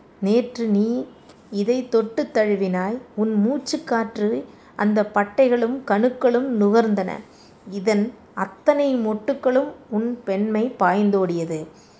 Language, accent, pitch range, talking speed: Tamil, native, 190-230 Hz, 90 wpm